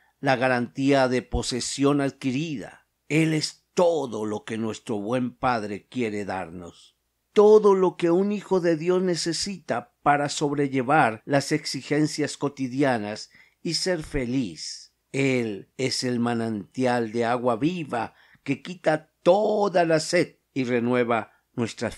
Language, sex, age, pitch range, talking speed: Spanish, male, 50-69, 120-170 Hz, 125 wpm